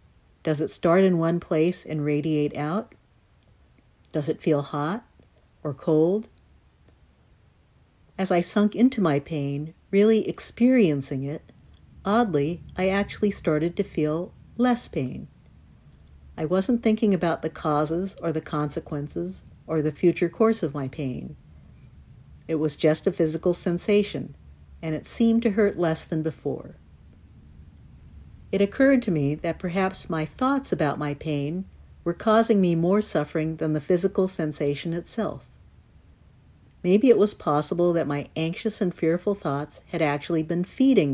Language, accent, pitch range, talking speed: English, American, 145-190 Hz, 140 wpm